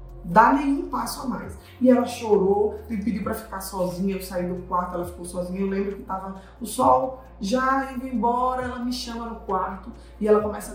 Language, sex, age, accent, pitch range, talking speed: Portuguese, female, 20-39, Brazilian, 190-245 Hz, 205 wpm